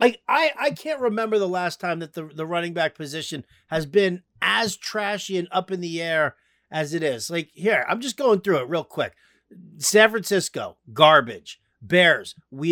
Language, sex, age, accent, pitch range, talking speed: English, male, 50-69, American, 150-200 Hz, 185 wpm